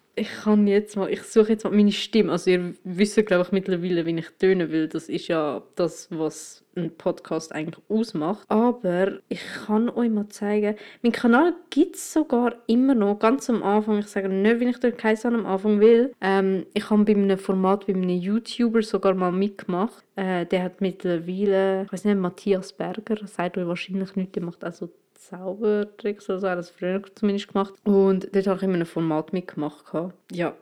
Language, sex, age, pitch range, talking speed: German, female, 20-39, 180-220 Hz, 195 wpm